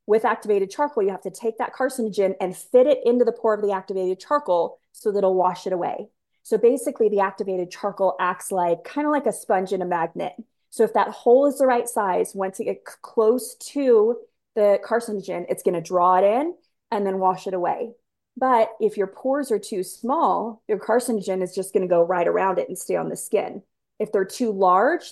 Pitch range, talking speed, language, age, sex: 185-235 Hz, 215 wpm, English, 20-39, female